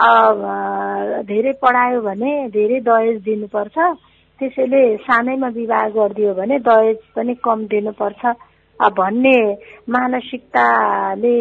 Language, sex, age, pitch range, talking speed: English, female, 60-79, 200-250 Hz, 125 wpm